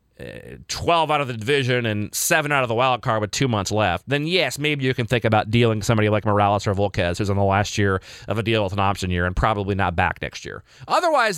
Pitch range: 105-155 Hz